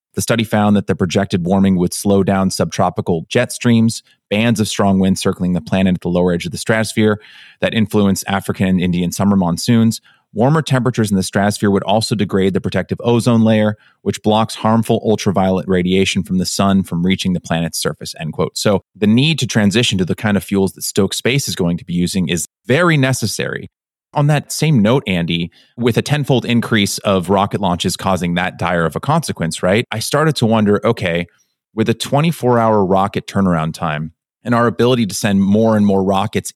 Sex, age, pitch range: male, 30-49, 95-120 Hz